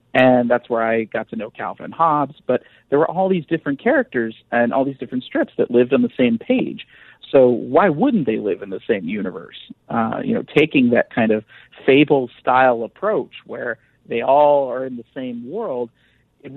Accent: American